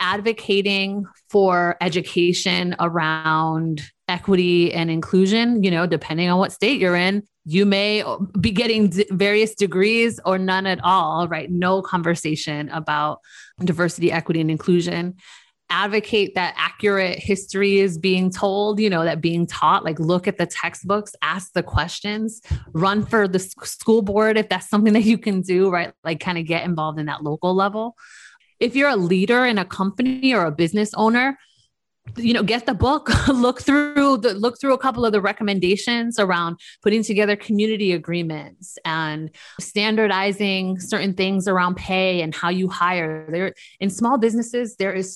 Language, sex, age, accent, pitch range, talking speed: English, female, 30-49, American, 175-210 Hz, 160 wpm